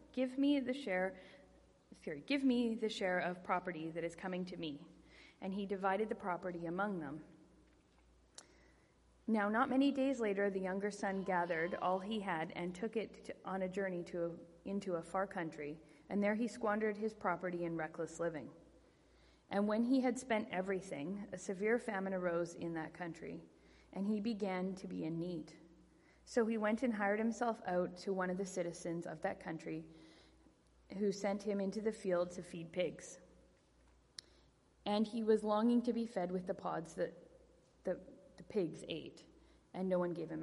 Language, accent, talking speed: English, American, 180 wpm